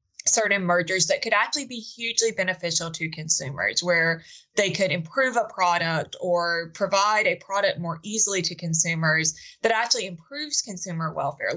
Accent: American